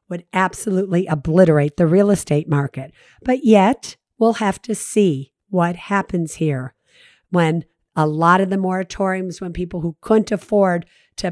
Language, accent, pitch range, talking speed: English, American, 165-205 Hz, 150 wpm